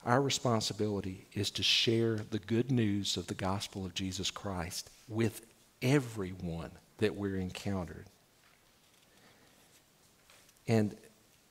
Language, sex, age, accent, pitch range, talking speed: English, male, 50-69, American, 100-130 Hz, 105 wpm